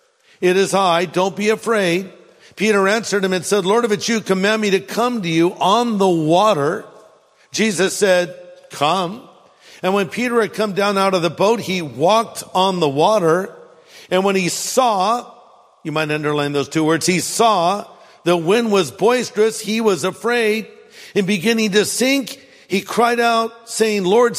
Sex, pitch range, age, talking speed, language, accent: male, 170-230 Hz, 50-69, 170 wpm, English, American